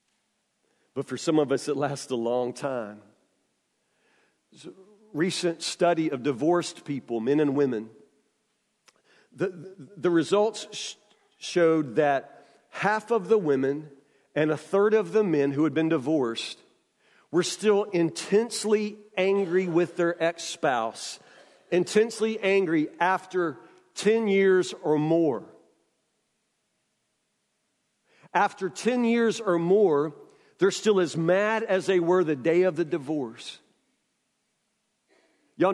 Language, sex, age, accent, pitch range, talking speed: English, male, 50-69, American, 155-210 Hz, 120 wpm